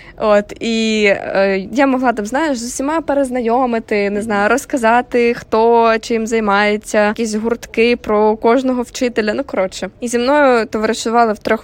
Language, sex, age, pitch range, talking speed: Ukrainian, female, 20-39, 195-235 Hz, 150 wpm